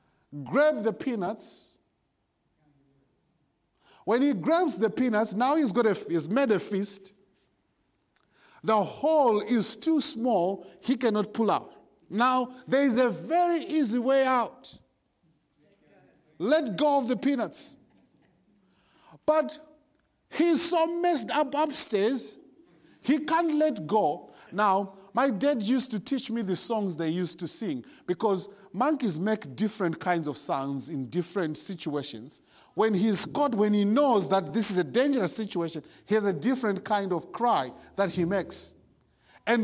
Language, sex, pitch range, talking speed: English, male, 195-255 Hz, 140 wpm